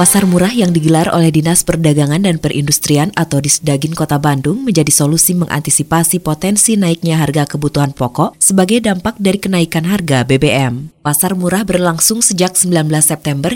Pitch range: 145-185 Hz